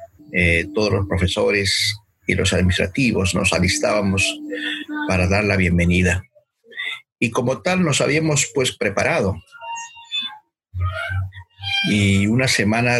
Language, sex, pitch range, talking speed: Spanish, male, 95-120 Hz, 105 wpm